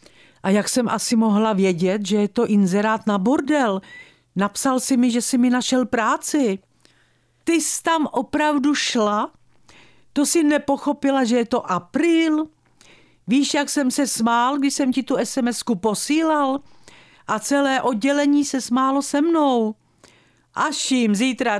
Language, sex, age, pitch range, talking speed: Czech, female, 50-69, 195-275 Hz, 145 wpm